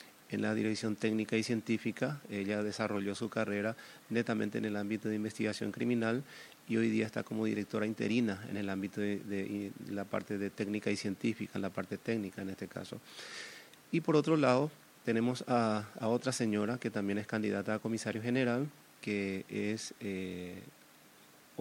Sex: male